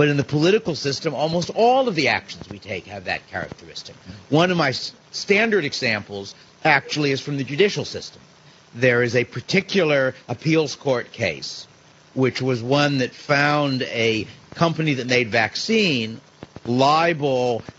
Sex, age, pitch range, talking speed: male, 50-69, 115-150 Hz, 150 wpm